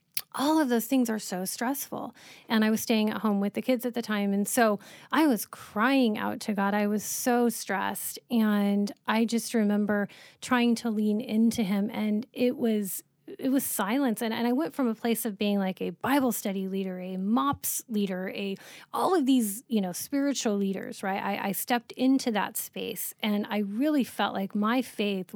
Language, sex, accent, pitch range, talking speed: English, female, American, 200-240 Hz, 200 wpm